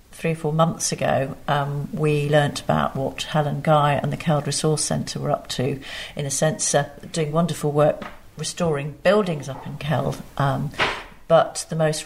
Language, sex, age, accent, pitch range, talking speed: English, female, 50-69, British, 145-165 Hz, 180 wpm